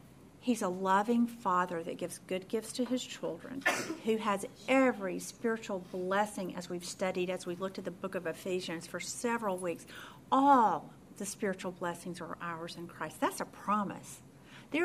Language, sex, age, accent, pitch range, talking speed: English, female, 50-69, American, 180-245 Hz, 170 wpm